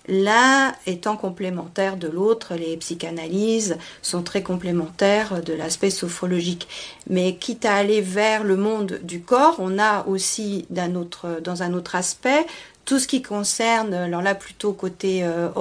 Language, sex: French, female